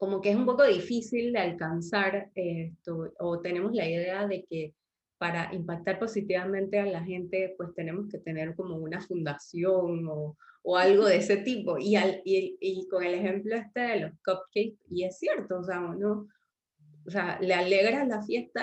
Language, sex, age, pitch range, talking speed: Spanish, female, 20-39, 175-205 Hz, 185 wpm